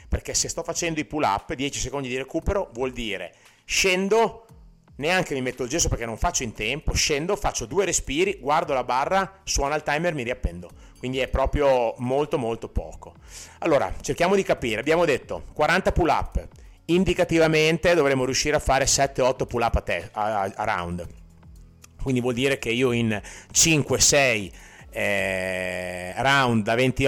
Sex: male